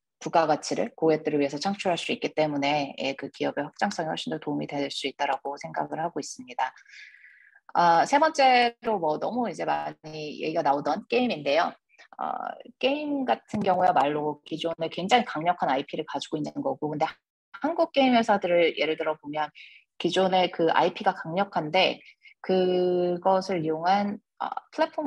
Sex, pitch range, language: female, 155-230 Hz, Korean